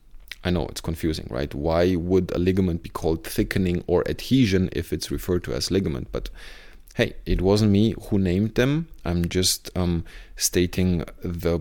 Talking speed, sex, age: 170 wpm, male, 30-49